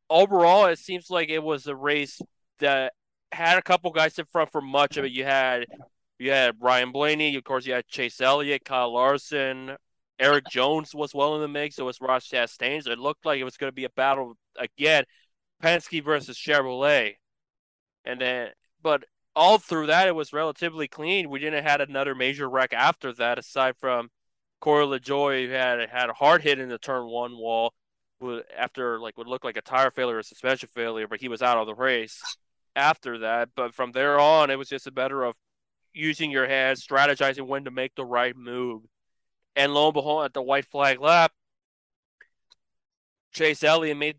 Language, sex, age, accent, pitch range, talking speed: English, male, 20-39, American, 125-150 Hz, 195 wpm